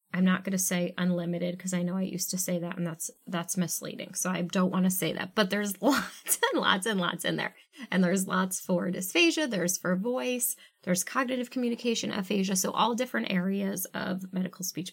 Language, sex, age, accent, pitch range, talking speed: English, female, 20-39, American, 185-230 Hz, 215 wpm